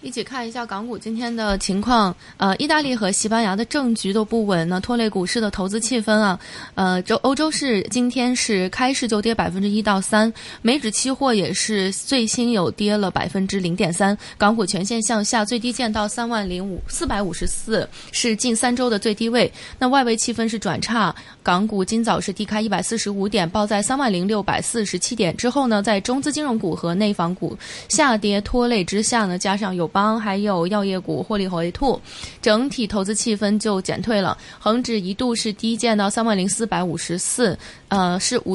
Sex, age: female, 20-39